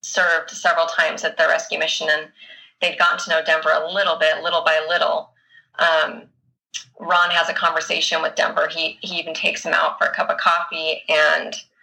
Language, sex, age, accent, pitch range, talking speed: English, female, 30-49, American, 165-215 Hz, 195 wpm